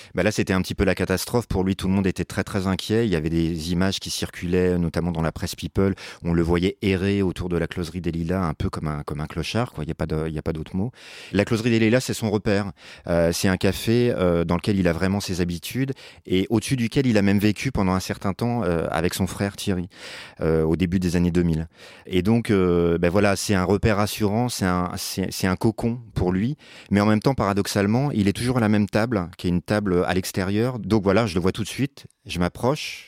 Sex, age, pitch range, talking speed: male, 30-49, 85-105 Hz, 260 wpm